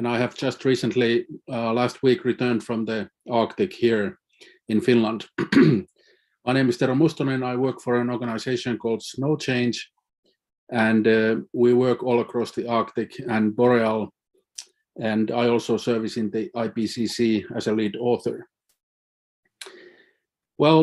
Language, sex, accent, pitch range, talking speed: English, male, Finnish, 120-135 Hz, 145 wpm